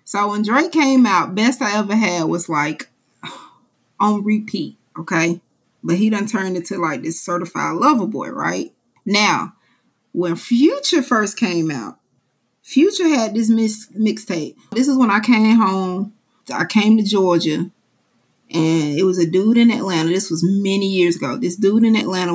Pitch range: 180-235 Hz